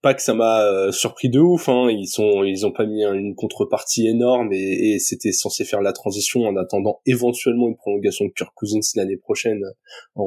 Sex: male